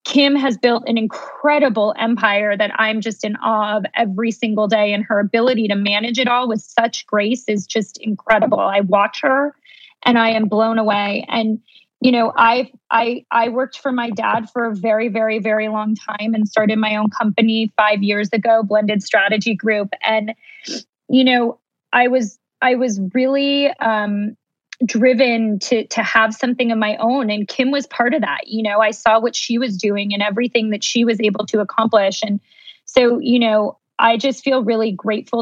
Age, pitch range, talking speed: 20-39, 210-240 Hz, 190 wpm